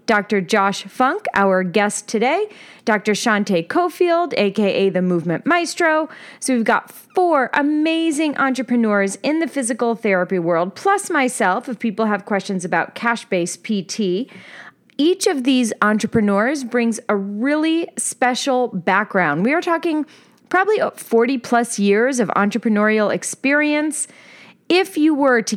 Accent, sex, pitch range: American, female, 210-290 Hz